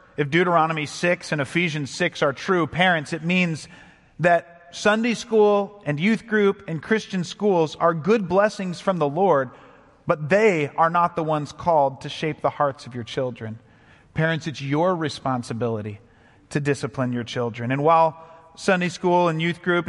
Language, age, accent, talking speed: English, 40-59, American, 165 wpm